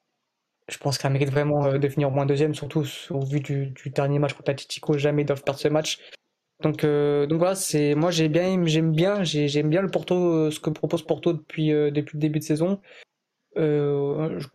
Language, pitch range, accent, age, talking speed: French, 145-175 Hz, French, 20-39, 205 wpm